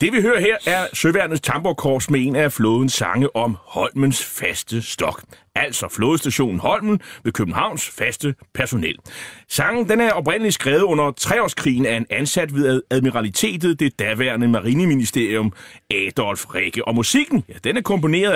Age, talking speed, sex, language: 30-49, 150 wpm, male, Danish